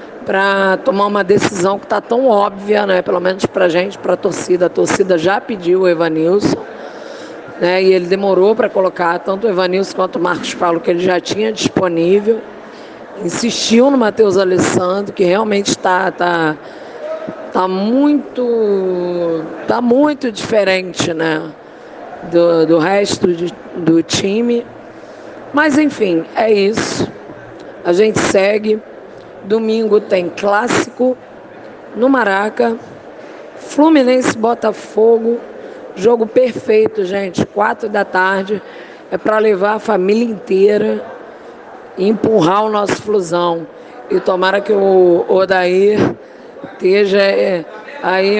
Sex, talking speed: female, 115 wpm